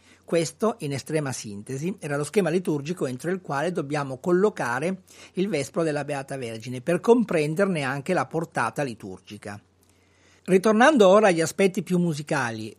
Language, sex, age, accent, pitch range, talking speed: Italian, male, 40-59, native, 130-185 Hz, 140 wpm